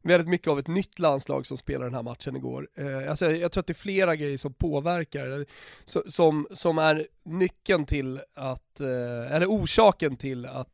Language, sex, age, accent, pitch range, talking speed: Swedish, male, 30-49, native, 140-175 Hz, 200 wpm